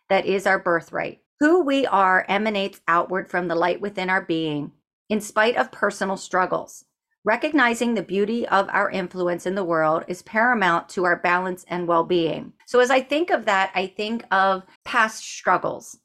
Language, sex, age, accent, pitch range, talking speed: English, female, 40-59, American, 180-235 Hz, 175 wpm